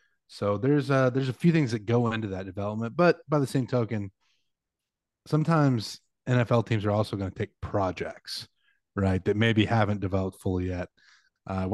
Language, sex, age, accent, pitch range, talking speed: English, male, 30-49, American, 95-115 Hz, 175 wpm